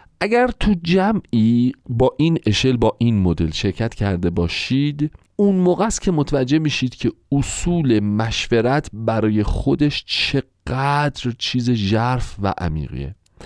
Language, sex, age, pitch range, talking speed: Persian, male, 40-59, 100-150 Hz, 125 wpm